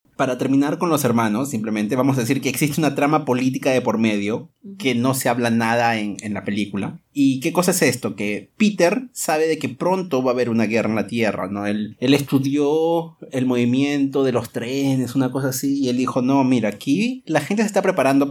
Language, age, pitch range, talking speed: Spanish, 30-49, 125-155 Hz, 225 wpm